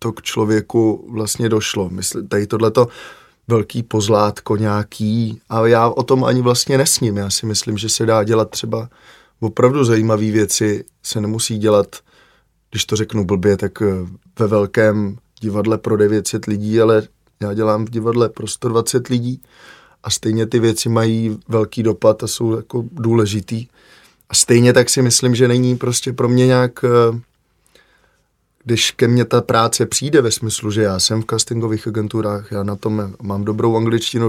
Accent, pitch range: native, 110-120 Hz